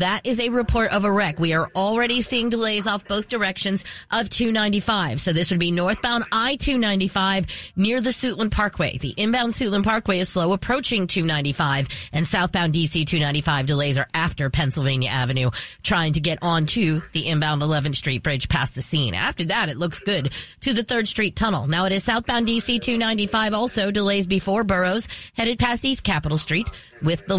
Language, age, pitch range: English, 30-49, 160-220 Hz